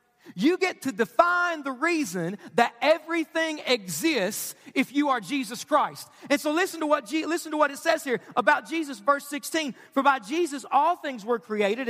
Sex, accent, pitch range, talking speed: male, American, 235-315 Hz, 180 wpm